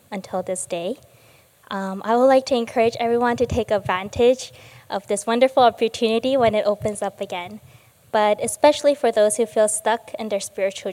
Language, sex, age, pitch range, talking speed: English, female, 10-29, 200-235 Hz, 175 wpm